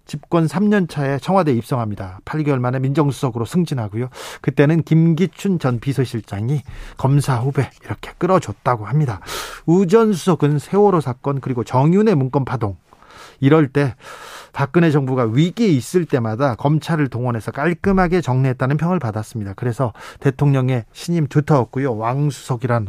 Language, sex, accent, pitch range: Korean, male, native, 130-175 Hz